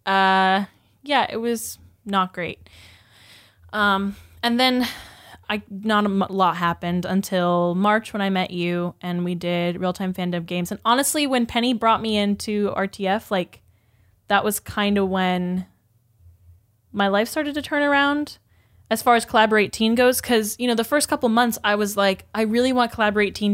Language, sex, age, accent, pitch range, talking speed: English, female, 10-29, American, 175-215 Hz, 170 wpm